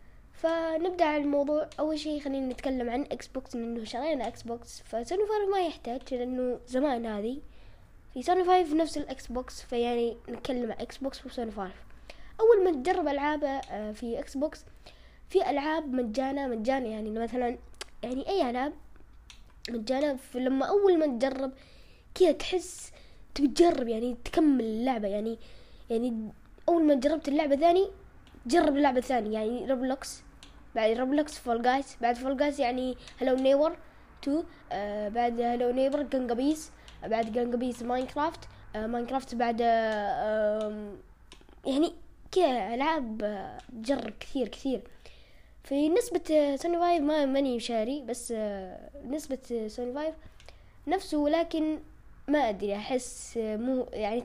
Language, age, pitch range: Arabic, 10-29, 235-305 Hz